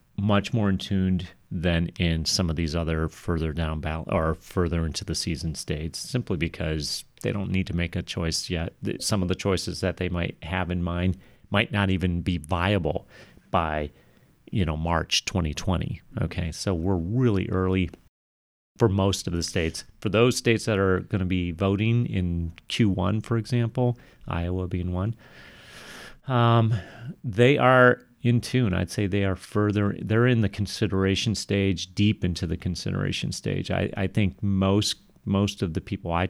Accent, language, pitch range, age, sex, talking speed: American, English, 85-105 Hz, 30-49, male, 170 wpm